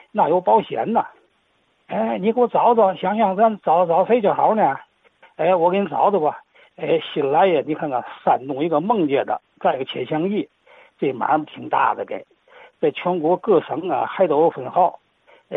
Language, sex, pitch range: Chinese, male, 165-235 Hz